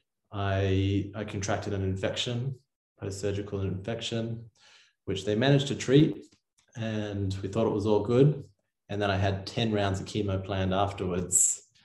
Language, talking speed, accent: English, 145 wpm, Australian